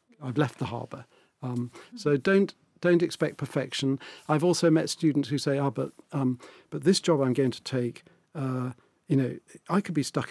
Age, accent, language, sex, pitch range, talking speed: 50-69, British, English, male, 130-165 Hz, 190 wpm